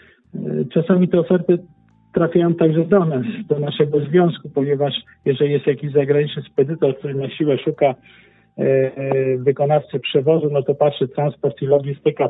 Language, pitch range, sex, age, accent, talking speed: Polish, 135-165 Hz, male, 50-69, native, 140 wpm